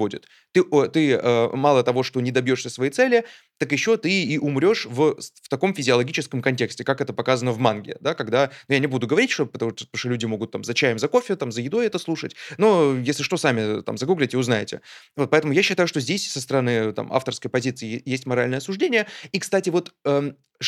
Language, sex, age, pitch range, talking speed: Russian, male, 20-39, 125-175 Hz, 200 wpm